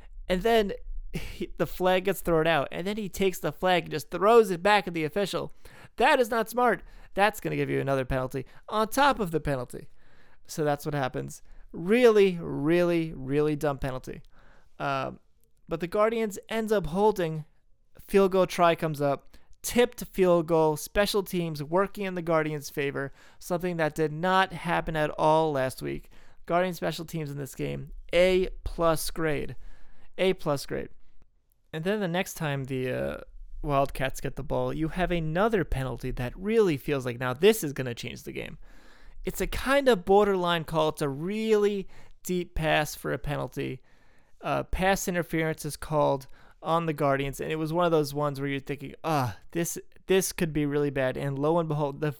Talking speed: 185 wpm